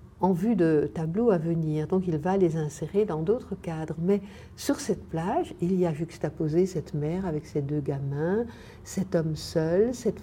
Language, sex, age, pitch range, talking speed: French, female, 60-79, 165-210 Hz, 190 wpm